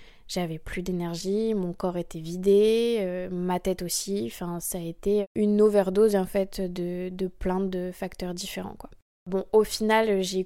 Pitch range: 185-210 Hz